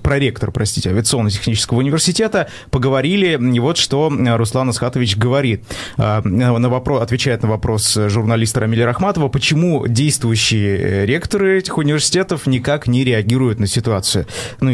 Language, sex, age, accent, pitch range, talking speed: Russian, male, 20-39, native, 115-145 Hz, 115 wpm